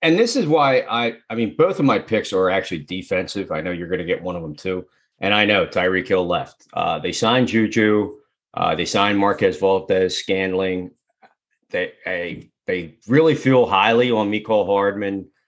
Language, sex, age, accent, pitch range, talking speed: English, male, 40-59, American, 95-135 Hz, 195 wpm